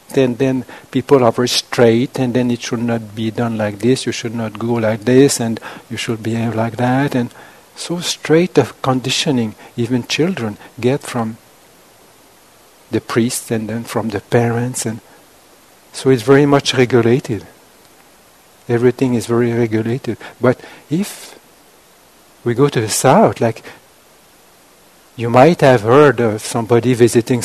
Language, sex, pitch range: English, male, 115-135 Hz